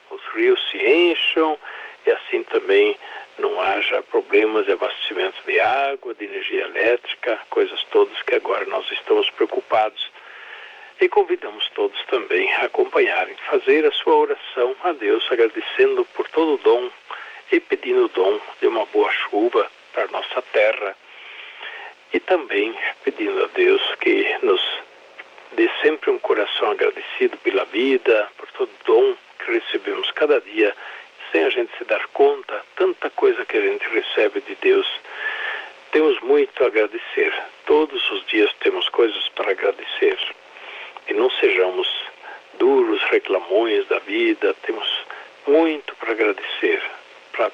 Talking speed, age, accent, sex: 140 wpm, 60-79, Brazilian, male